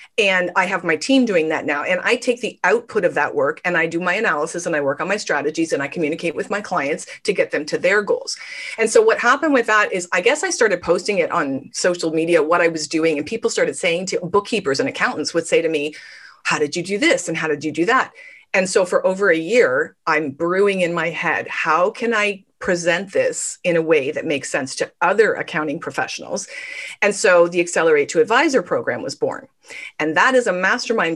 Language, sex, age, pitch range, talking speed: English, female, 40-59, 170-255 Hz, 235 wpm